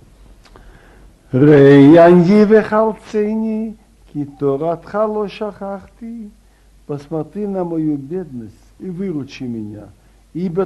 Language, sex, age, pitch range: Russian, male, 60-79, 150-200 Hz